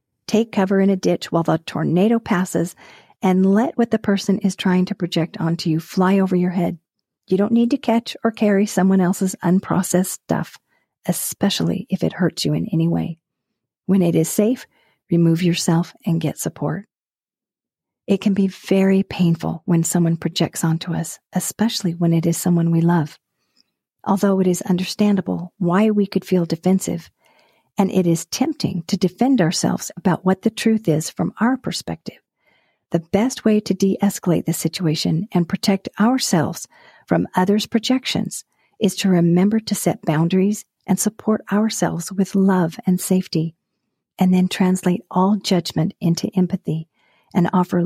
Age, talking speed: 50-69, 160 wpm